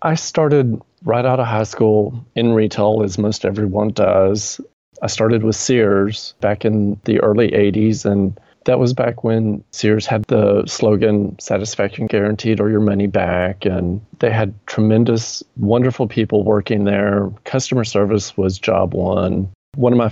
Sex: male